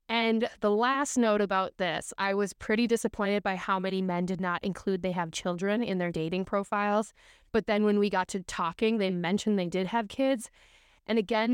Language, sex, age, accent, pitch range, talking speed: English, female, 20-39, American, 190-230 Hz, 205 wpm